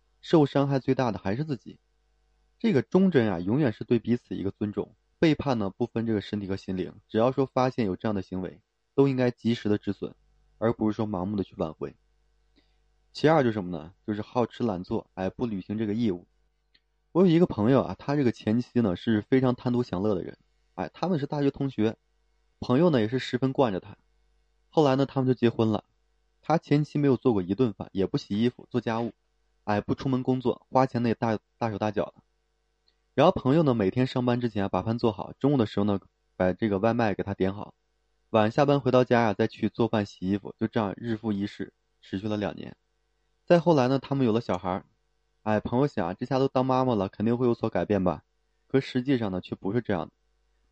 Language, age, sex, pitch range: Chinese, 20-39, male, 100-130 Hz